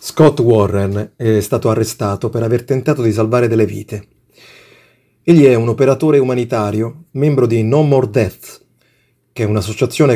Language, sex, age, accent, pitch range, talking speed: Italian, male, 30-49, native, 110-140 Hz, 150 wpm